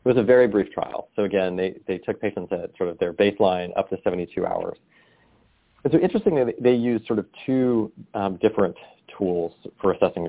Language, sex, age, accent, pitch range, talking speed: English, male, 40-59, American, 95-110 Hz, 205 wpm